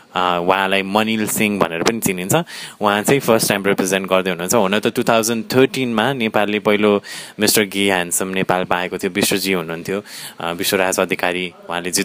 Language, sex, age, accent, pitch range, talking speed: English, male, 20-39, Indian, 95-115 Hz, 130 wpm